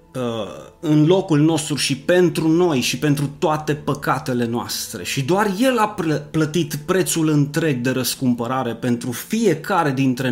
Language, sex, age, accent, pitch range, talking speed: Romanian, male, 30-49, native, 125-170 Hz, 135 wpm